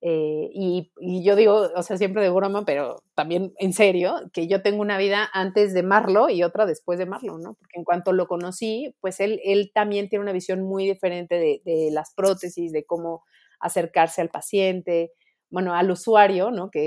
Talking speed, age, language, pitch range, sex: 200 wpm, 30-49, Spanish, 170-215 Hz, female